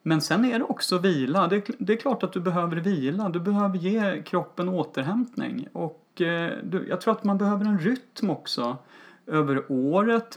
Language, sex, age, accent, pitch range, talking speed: Swedish, male, 30-49, native, 145-195 Hz, 170 wpm